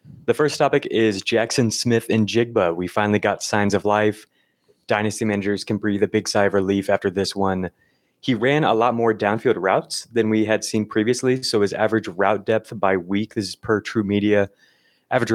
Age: 20-39